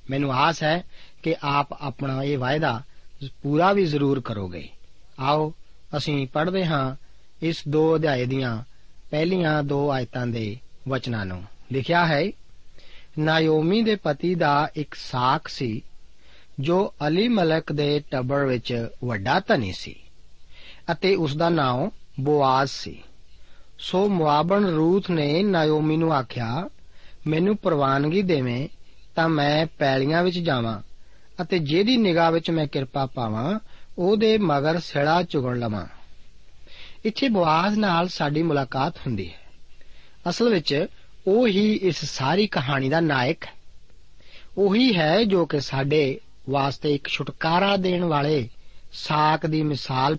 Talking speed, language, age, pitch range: 115 wpm, Punjabi, 40-59, 130-170 Hz